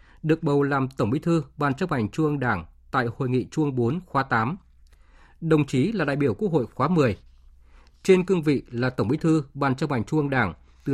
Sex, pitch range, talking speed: male, 115-155 Hz, 235 wpm